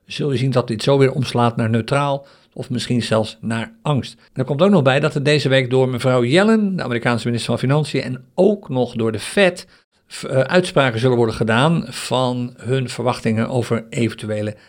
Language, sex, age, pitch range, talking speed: Dutch, male, 50-69, 115-140 Hz, 190 wpm